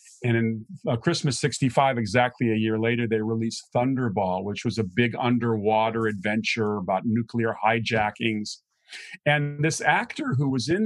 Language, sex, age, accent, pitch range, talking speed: English, male, 40-59, American, 110-140 Hz, 150 wpm